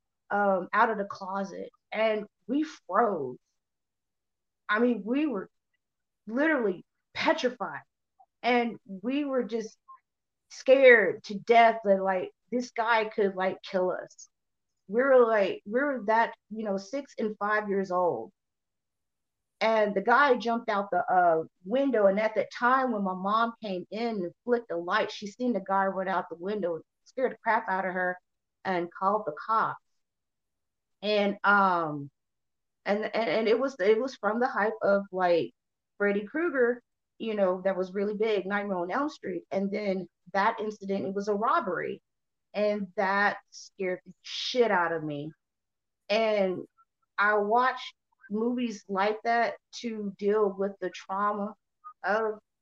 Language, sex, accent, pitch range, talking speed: English, female, American, 190-235 Hz, 155 wpm